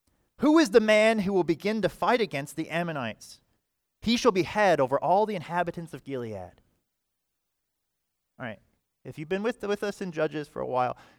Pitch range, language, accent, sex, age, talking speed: 125-180 Hz, English, American, male, 30-49, 195 wpm